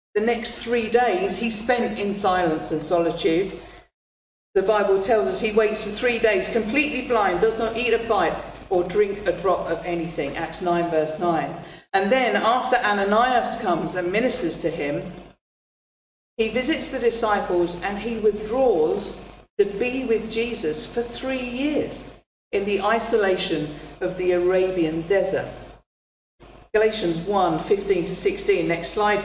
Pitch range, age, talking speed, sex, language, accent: 175-245 Hz, 50-69, 150 wpm, female, English, British